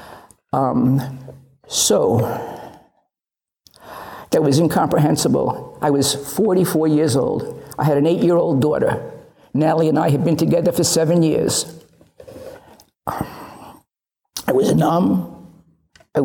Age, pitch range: 50-69, 150-180 Hz